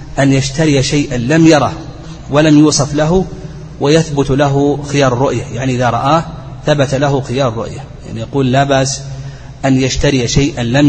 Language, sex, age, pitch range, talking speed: Arabic, male, 30-49, 130-155 Hz, 150 wpm